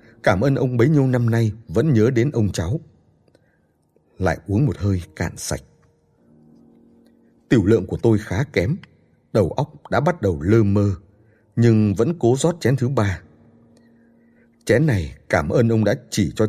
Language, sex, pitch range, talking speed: Vietnamese, male, 90-115 Hz, 165 wpm